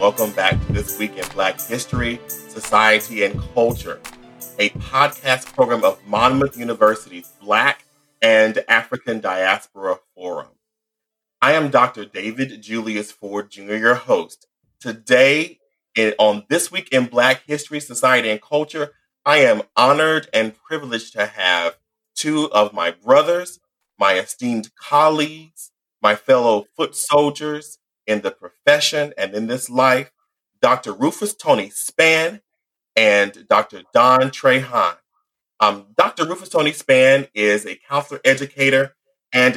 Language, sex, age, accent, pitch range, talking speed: English, male, 40-59, American, 110-150 Hz, 125 wpm